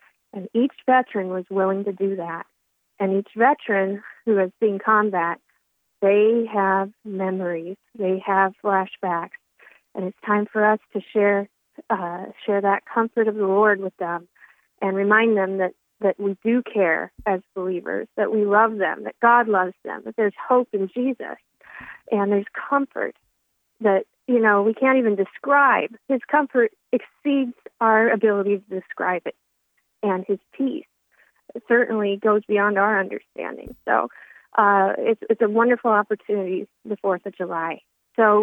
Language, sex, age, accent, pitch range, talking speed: English, female, 40-59, American, 195-235 Hz, 155 wpm